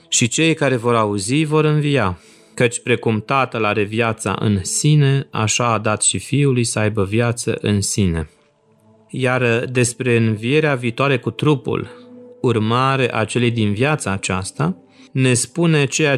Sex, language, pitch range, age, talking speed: male, Romanian, 110-140 Hz, 30-49, 145 wpm